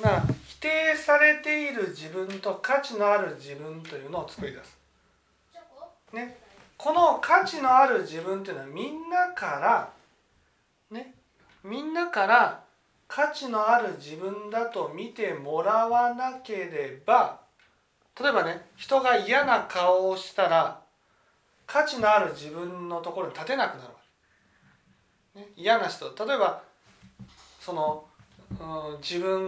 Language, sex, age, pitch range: Japanese, male, 40-59, 160-255 Hz